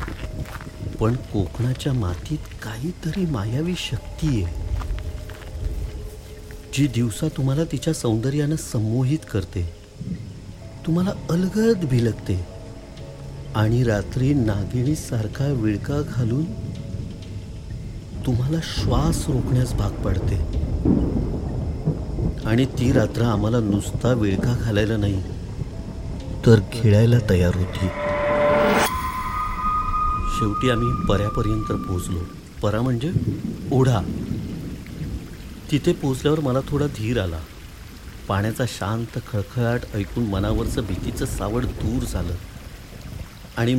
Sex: male